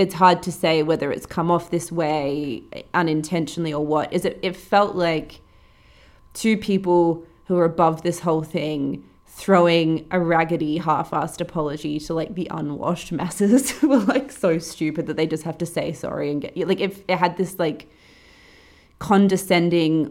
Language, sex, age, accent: English, female, 20-39, Australian